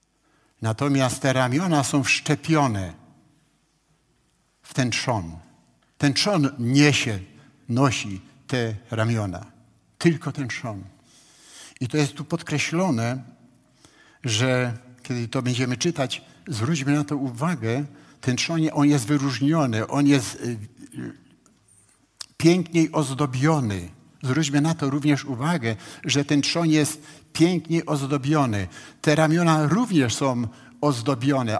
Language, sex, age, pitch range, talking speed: Polish, male, 60-79, 120-155 Hz, 105 wpm